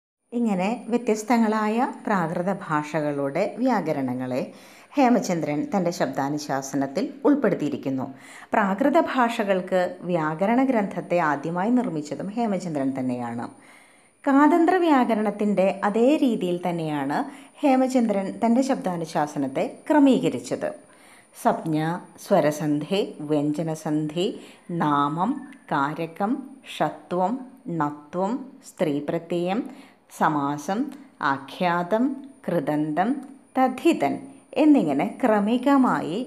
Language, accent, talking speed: Malayalam, native, 70 wpm